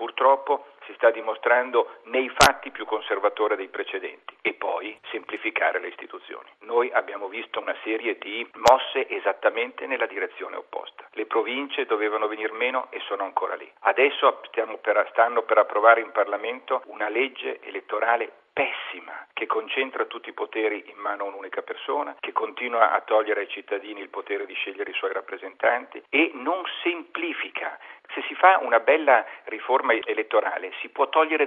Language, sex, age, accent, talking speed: Italian, male, 50-69, native, 155 wpm